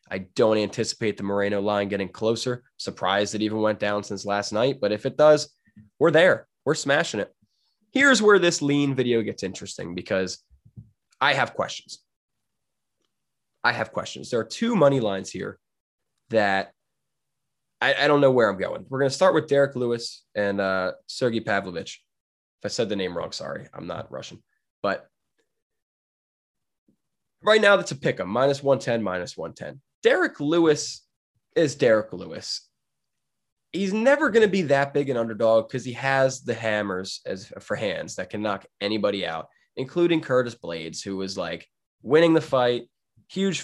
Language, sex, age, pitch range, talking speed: English, male, 20-39, 110-160 Hz, 165 wpm